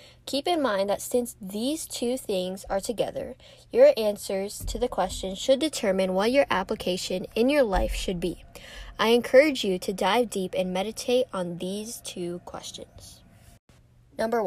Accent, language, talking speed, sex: American, English, 160 wpm, female